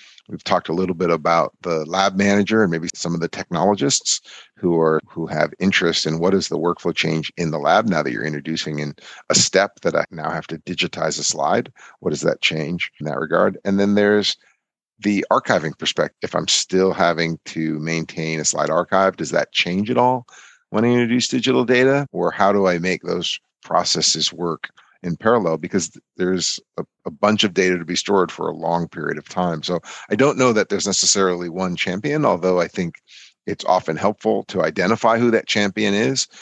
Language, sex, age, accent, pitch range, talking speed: English, male, 50-69, American, 80-100 Hz, 205 wpm